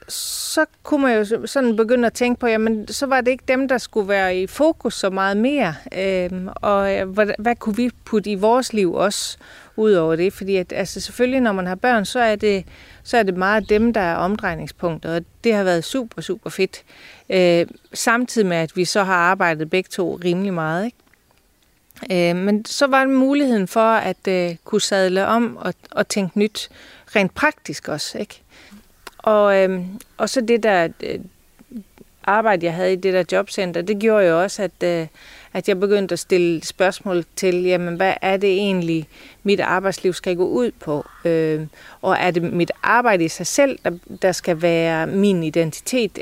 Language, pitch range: Danish, 180-225 Hz